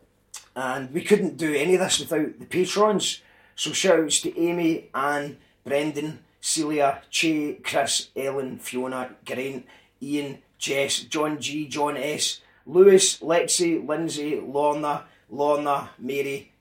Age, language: 30-49, English